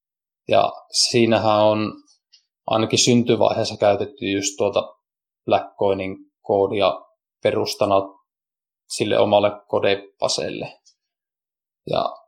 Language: Finnish